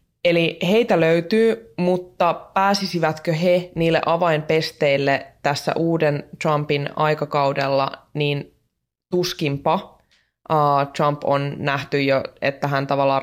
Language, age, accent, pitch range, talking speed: Finnish, 20-39, native, 140-165 Hz, 100 wpm